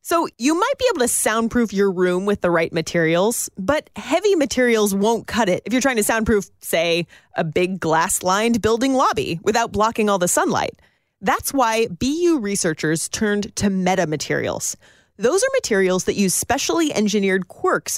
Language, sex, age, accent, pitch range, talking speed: English, female, 30-49, American, 185-270 Hz, 165 wpm